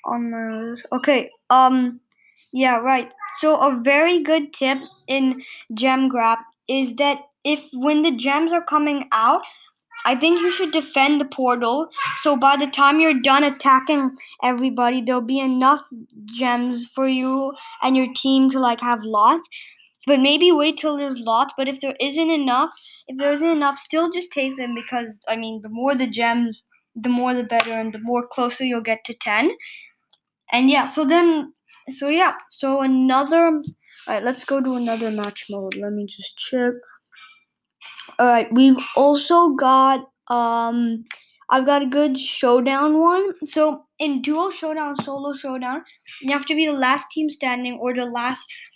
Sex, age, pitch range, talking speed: female, 10-29, 245-295 Hz, 170 wpm